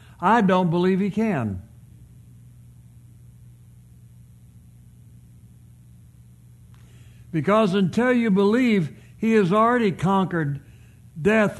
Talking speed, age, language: 70 wpm, 60-79, English